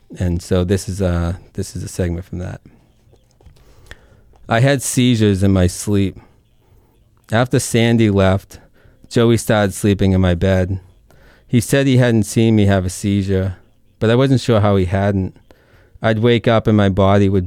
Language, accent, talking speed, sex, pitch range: English, American, 160 wpm, male, 95-115 Hz